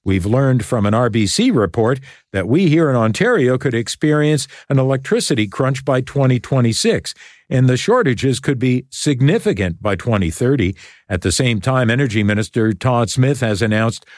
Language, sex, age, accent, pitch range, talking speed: English, male, 50-69, American, 115-150 Hz, 150 wpm